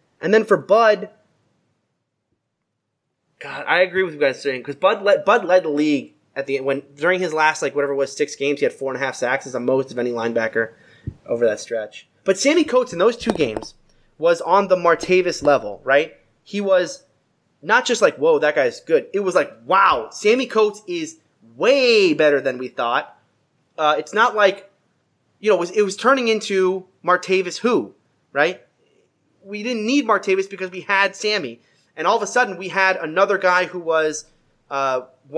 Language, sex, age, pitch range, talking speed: English, male, 20-39, 140-210 Hz, 200 wpm